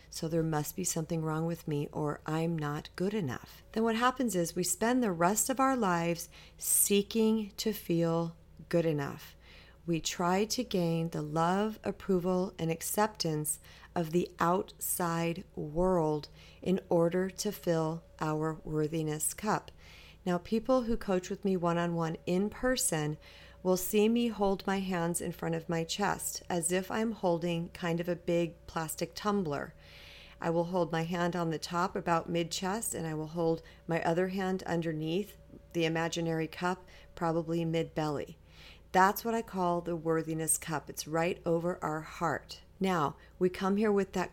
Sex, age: female, 40-59